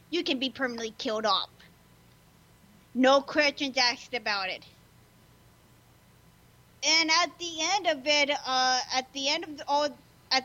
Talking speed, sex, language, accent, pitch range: 145 wpm, female, English, American, 235-300 Hz